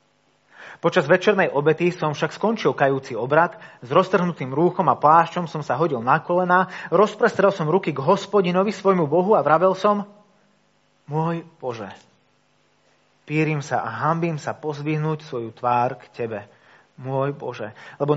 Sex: male